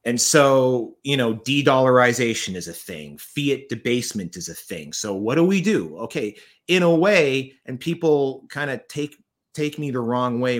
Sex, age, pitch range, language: male, 30-49, 105-145 Hz, English